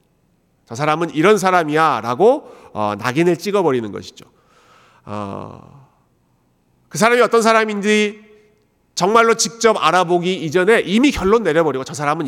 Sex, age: male, 40-59